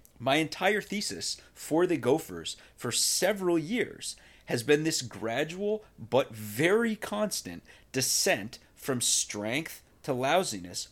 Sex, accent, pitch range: male, American, 110-160 Hz